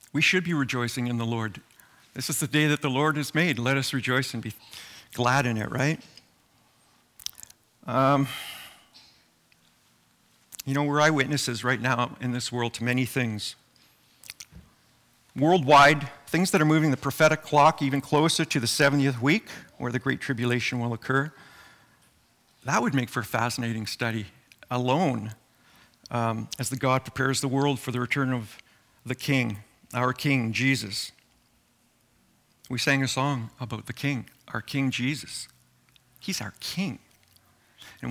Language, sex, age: English, male, 50-69